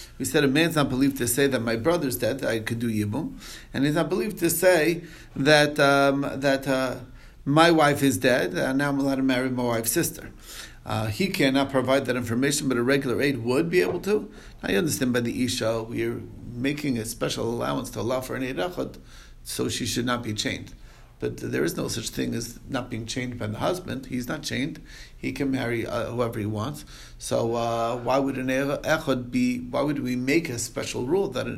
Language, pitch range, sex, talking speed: English, 115-140 Hz, male, 215 wpm